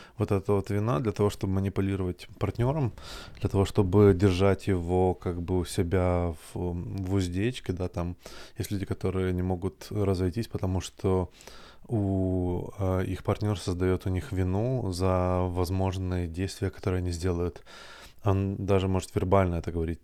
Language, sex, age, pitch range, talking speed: Russian, male, 20-39, 90-100 Hz, 155 wpm